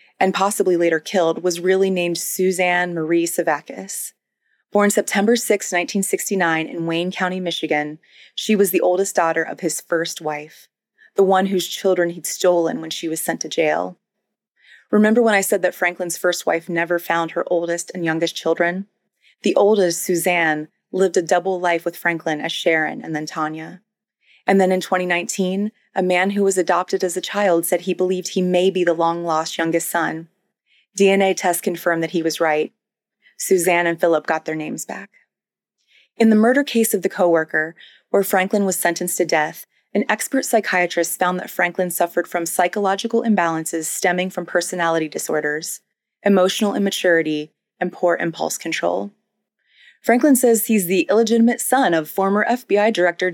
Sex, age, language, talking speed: female, 30-49, English, 165 wpm